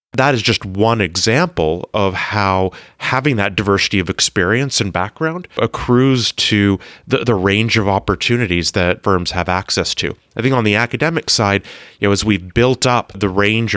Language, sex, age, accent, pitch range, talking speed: English, male, 30-49, American, 95-120 Hz, 175 wpm